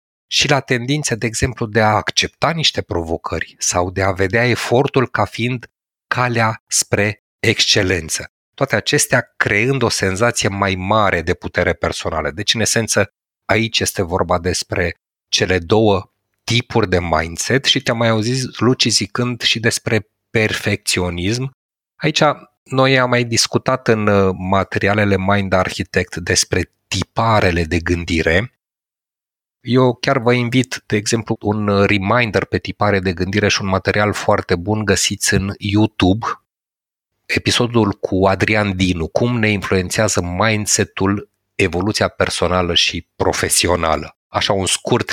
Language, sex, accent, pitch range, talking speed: Romanian, male, native, 95-115 Hz, 130 wpm